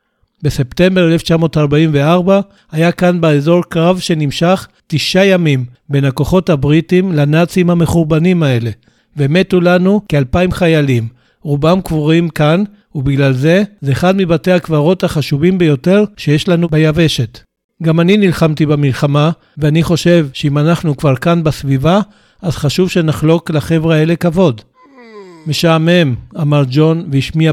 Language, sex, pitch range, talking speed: Hebrew, male, 145-175 Hz, 120 wpm